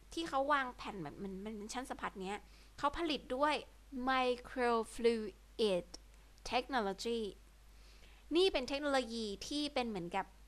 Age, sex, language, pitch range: 20-39, female, Thai, 200-260 Hz